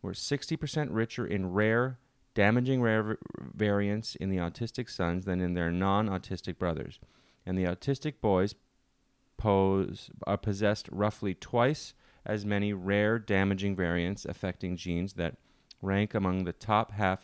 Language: English